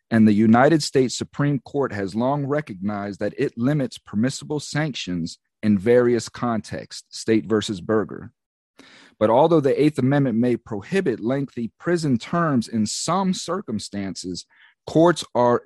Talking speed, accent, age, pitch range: 135 wpm, American, 40-59, 105-145 Hz